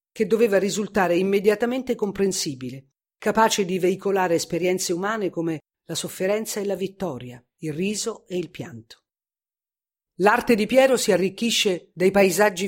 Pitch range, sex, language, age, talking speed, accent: 155-205 Hz, female, Italian, 50-69, 135 wpm, native